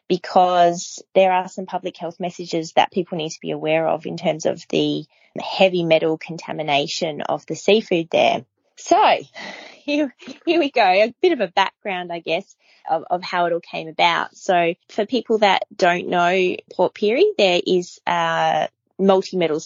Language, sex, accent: English, female, Australian